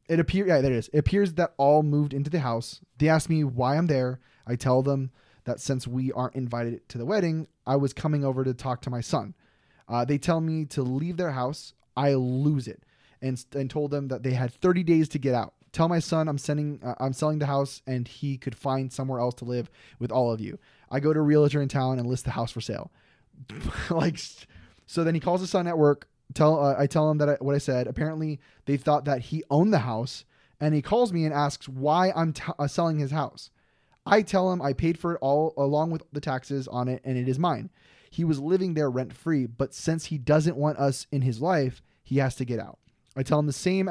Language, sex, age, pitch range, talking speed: English, male, 20-39, 125-155 Hz, 245 wpm